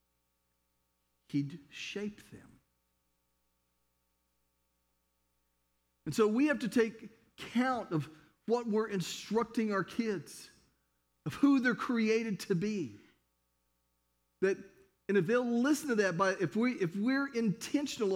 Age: 50-69